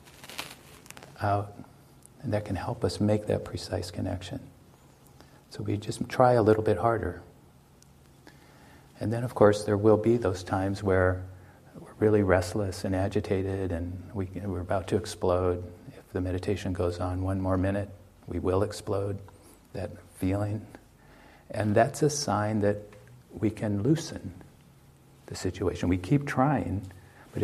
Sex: male